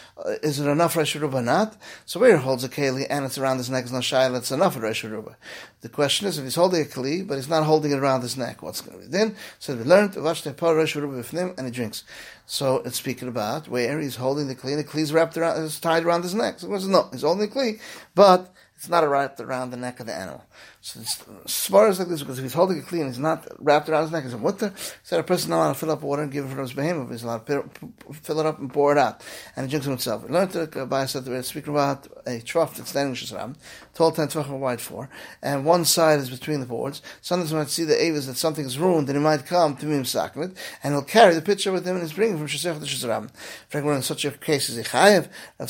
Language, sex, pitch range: English, male, 135-170 Hz